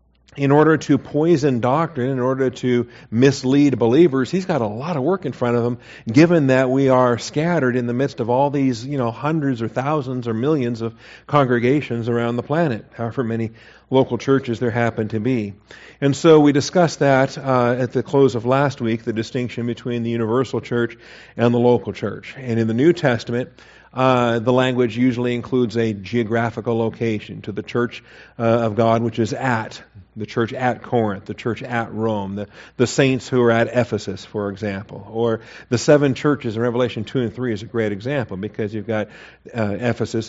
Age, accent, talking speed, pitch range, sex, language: 50-69, American, 195 wpm, 110-130 Hz, male, English